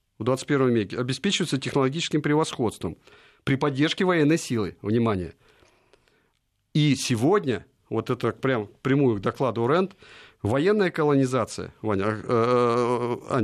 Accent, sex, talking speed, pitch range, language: native, male, 105 wpm, 120-155 Hz, Russian